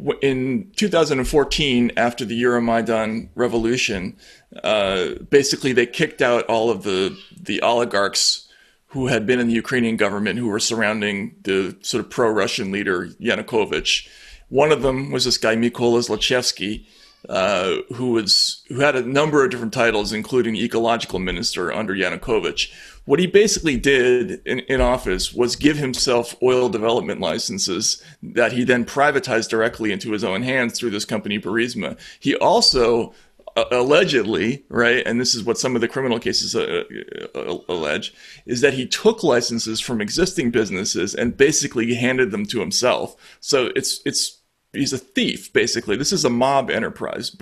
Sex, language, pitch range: male, English, 115-140 Hz